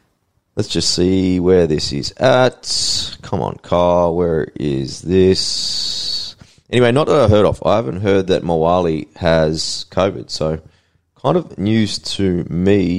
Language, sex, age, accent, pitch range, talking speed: English, male, 20-39, Australian, 90-110 Hz, 150 wpm